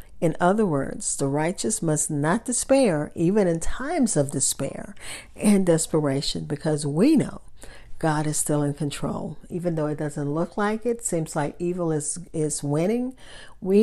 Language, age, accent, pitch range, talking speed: English, 50-69, American, 145-180 Hz, 160 wpm